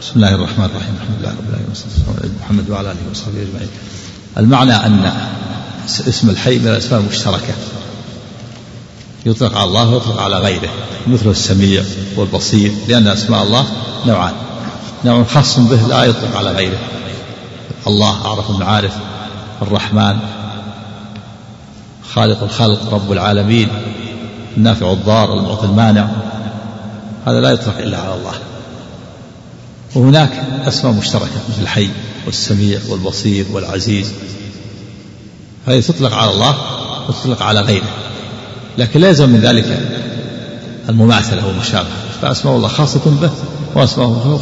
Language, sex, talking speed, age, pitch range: Arabic, male, 120 wpm, 50-69, 105-120 Hz